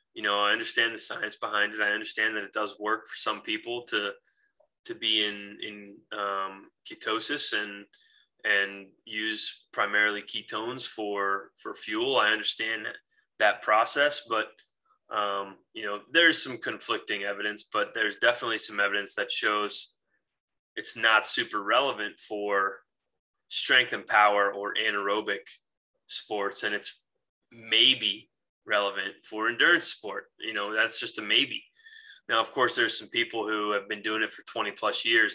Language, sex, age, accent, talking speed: English, male, 20-39, American, 155 wpm